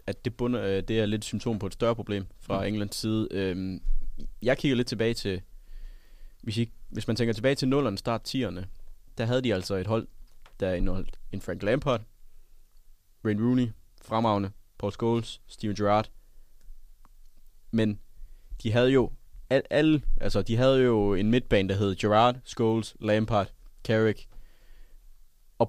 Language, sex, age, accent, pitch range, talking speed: Danish, male, 20-39, native, 100-115 Hz, 155 wpm